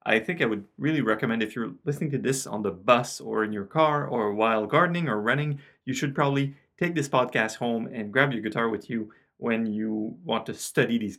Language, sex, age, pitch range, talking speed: English, male, 30-49, 115-150 Hz, 225 wpm